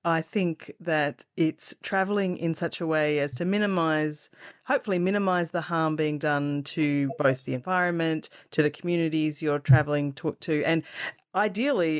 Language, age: English, 30-49